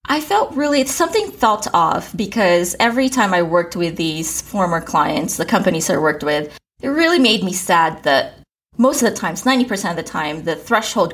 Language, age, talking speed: English, 20-39, 195 wpm